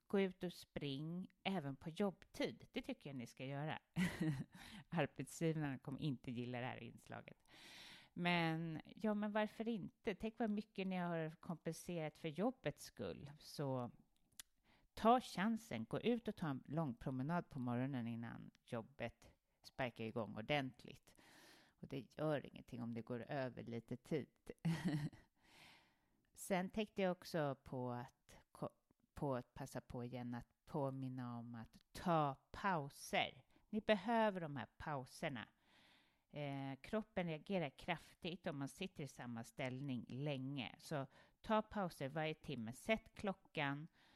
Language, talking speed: English, 135 wpm